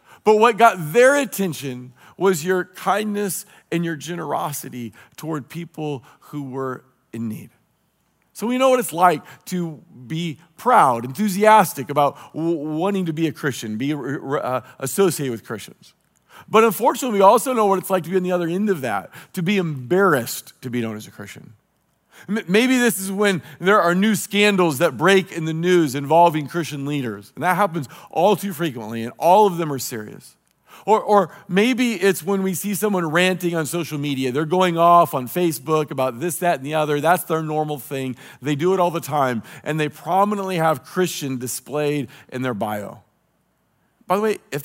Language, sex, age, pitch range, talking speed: English, male, 40-59, 145-195 Hz, 185 wpm